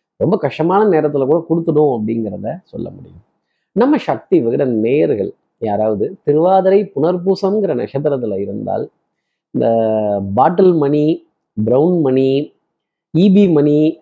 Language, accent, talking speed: Tamil, native, 105 wpm